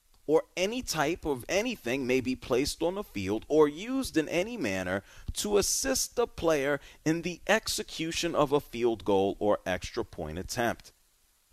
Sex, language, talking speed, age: male, English, 160 wpm, 30-49